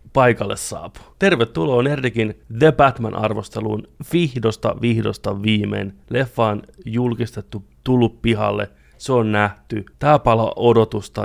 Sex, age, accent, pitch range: male, 30-49, native, 105-120 Hz